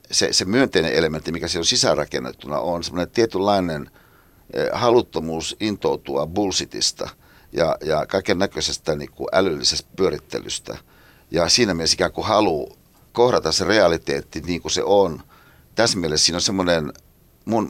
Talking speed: 135 wpm